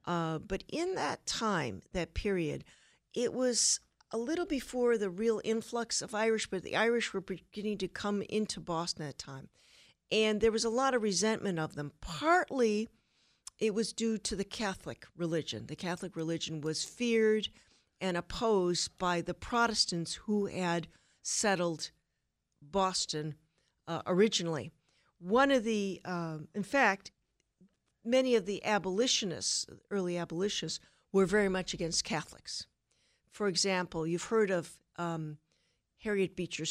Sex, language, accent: female, English, American